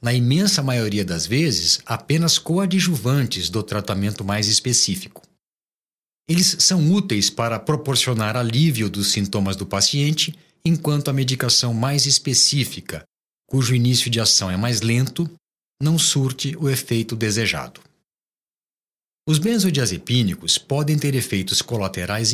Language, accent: Portuguese, Brazilian